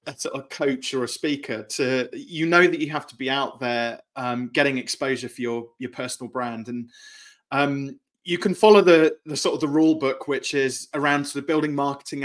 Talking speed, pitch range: 205 wpm, 125-150 Hz